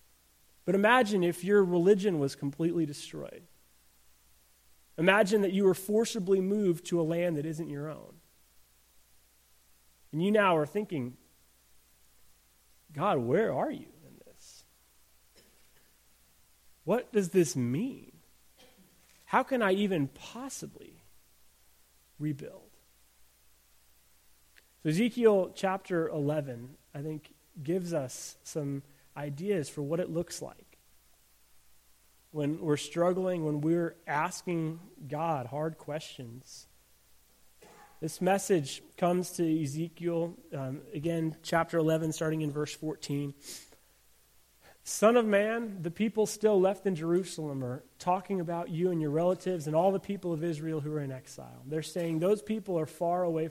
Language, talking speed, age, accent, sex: English, 125 wpm, 30-49, American, male